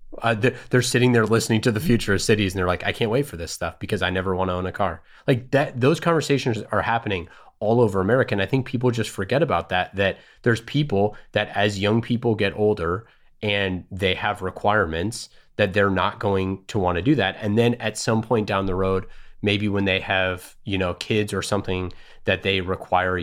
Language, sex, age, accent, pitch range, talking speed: English, male, 30-49, American, 95-120 Hz, 225 wpm